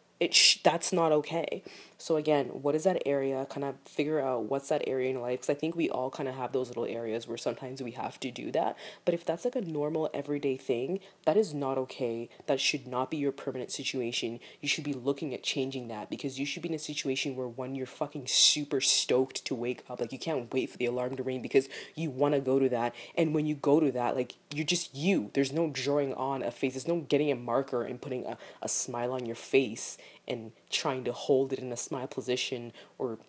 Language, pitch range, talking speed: English, 130-155 Hz, 245 wpm